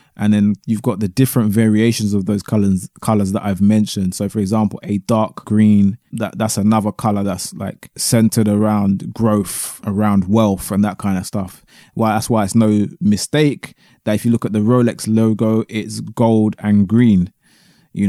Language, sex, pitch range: English, male, 100-115 Hz